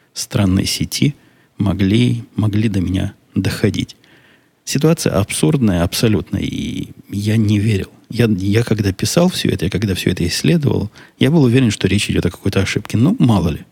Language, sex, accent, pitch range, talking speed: Russian, male, native, 95-125 Hz, 160 wpm